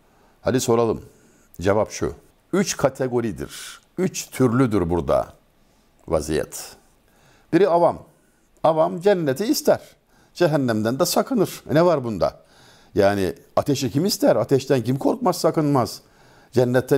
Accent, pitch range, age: native, 100-155 Hz, 60-79